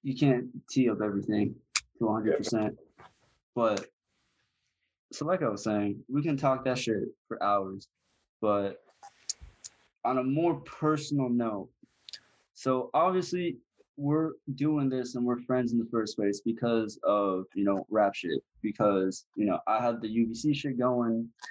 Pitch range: 100-135 Hz